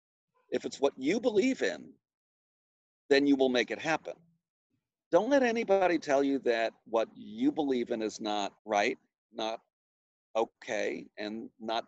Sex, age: male, 50-69